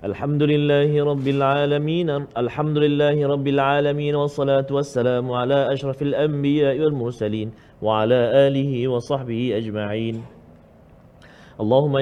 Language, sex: Malayalam, male